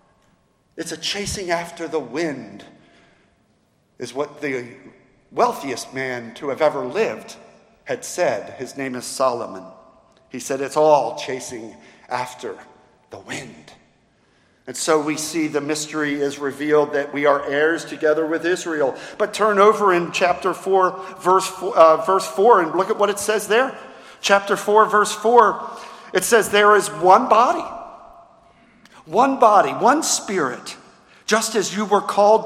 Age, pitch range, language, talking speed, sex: 50-69, 170-245 Hz, English, 150 wpm, male